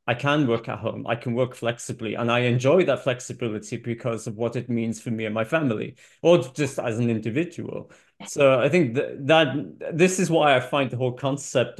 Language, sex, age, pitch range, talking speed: English, male, 30-49, 115-145 Hz, 215 wpm